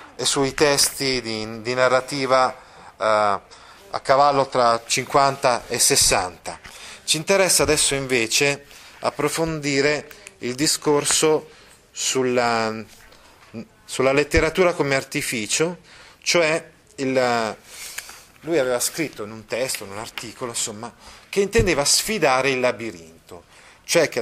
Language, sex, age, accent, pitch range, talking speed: Italian, male, 30-49, native, 115-160 Hz, 110 wpm